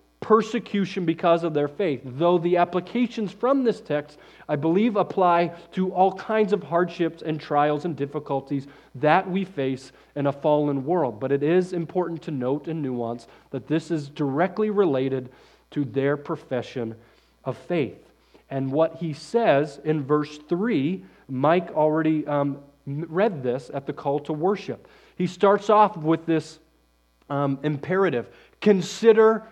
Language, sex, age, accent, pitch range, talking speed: English, male, 40-59, American, 145-205 Hz, 150 wpm